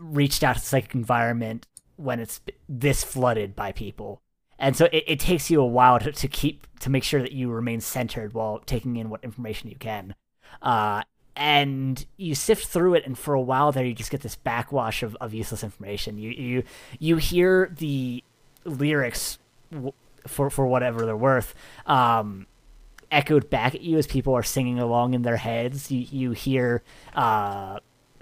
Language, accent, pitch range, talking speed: English, American, 115-145 Hz, 185 wpm